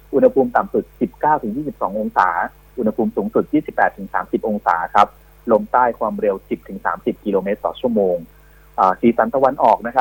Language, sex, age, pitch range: Thai, male, 30-49, 110-135 Hz